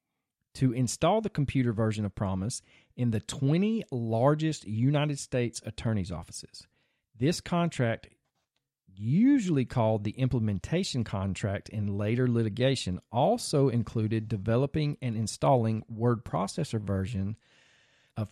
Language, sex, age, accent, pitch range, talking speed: English, male, 40-59, American, 110-140 Hz, 110 wpm